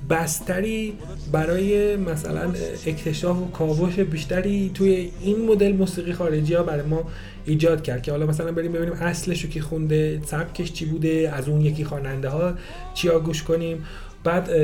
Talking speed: 150 wpm